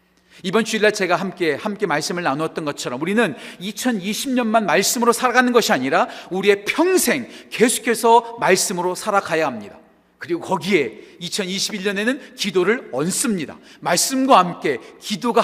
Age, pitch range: 40-59, 175-240 Hz